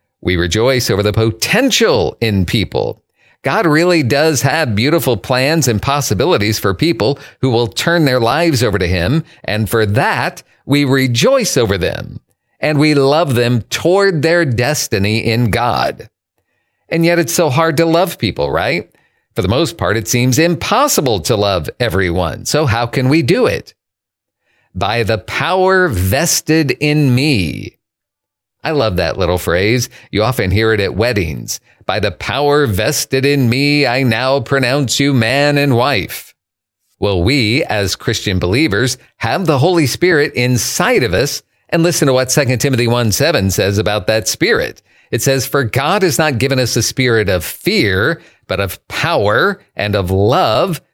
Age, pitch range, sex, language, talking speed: 40-59, 110-145 Hz, male, English, 160 wpm